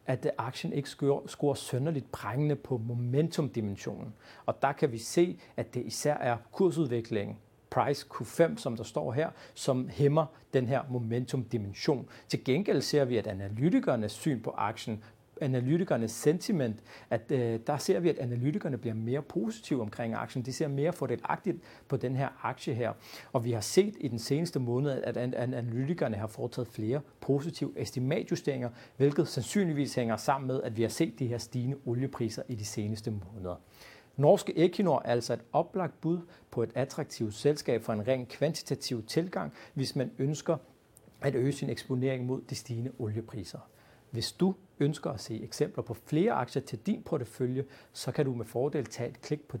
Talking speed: 170 wpm